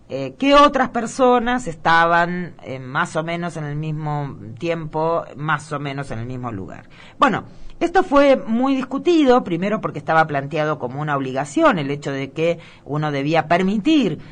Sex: female